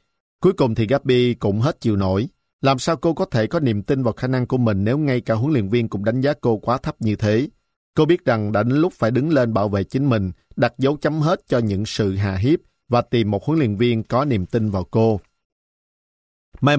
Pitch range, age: 105-130 Hz, 50-69